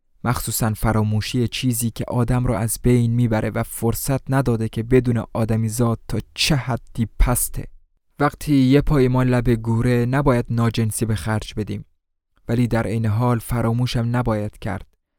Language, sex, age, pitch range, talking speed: Persian, male, 20-39, 110-125 Hz, 145 wpm